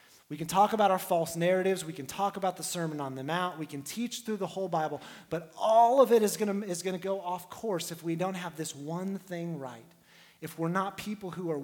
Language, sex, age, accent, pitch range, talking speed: English, male, 30-49, American, 150-185 Hz, 245 wpm